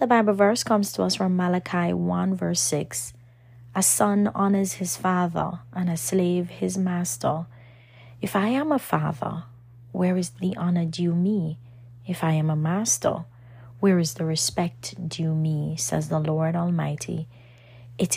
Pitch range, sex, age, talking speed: 120-175 Hz, female, 30-49, 160 wpm